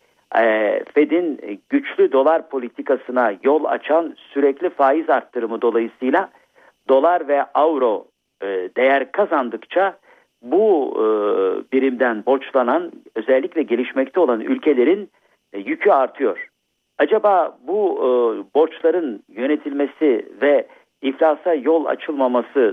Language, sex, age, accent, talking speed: Turkish, male, 50-69, native, 85 wpm